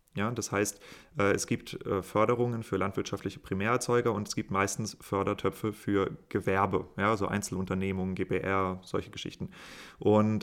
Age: 30-49